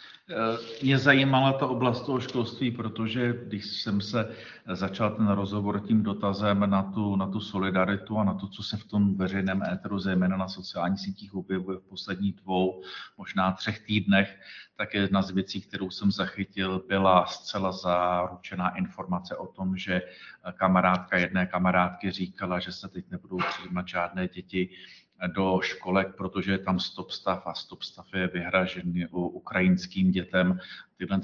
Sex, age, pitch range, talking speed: male, 50-69, 90-105 Hz, 155 wpm